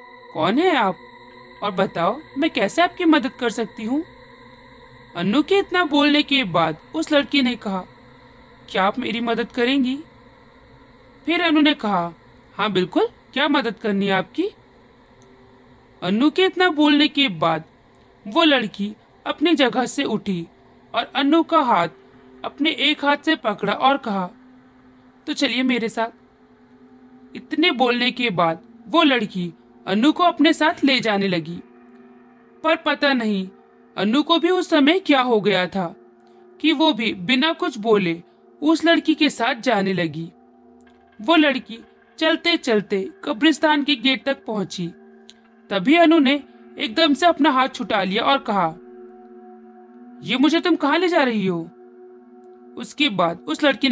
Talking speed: 150 wpm